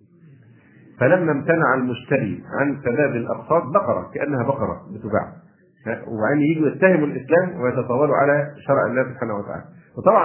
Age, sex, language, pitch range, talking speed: 50-69, male, Arabic, 120-150 Hz, 125 wpm